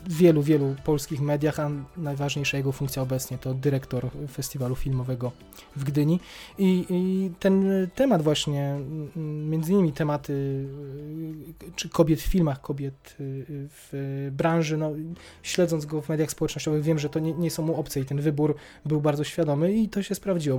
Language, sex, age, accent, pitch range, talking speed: Polish, male, 20-39, native, 140-165 Hz, 155 wpm